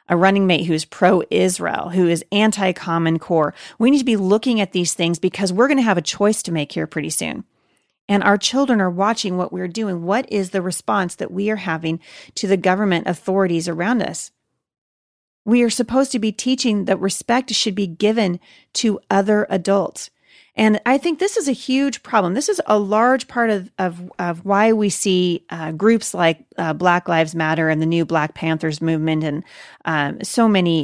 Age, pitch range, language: 40-59, 170-215 Hz, English